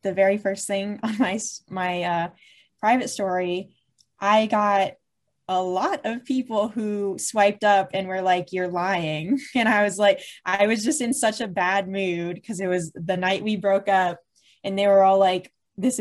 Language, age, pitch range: English, 10-29, 175-205 Hz